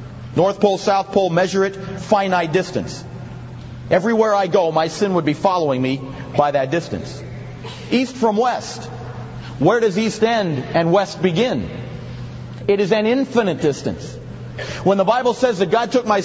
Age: 40-59